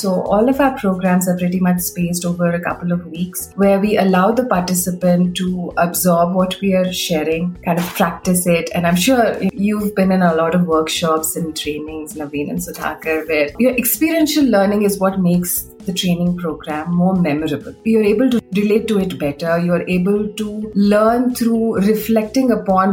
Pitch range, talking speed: 170-205 Hz, 180 wpm